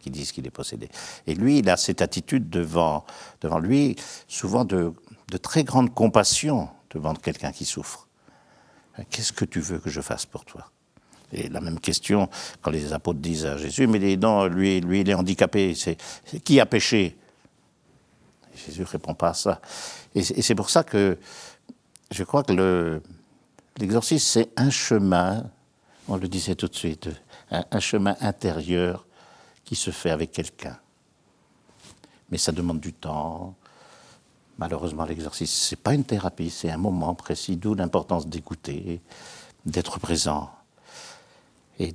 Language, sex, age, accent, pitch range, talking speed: French, male, 60-79, French, 85-110 Hz, 160 wpm